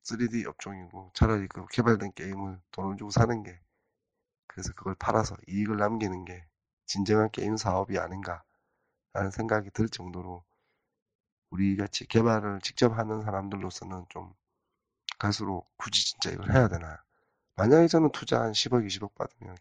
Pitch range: 95-115 Hz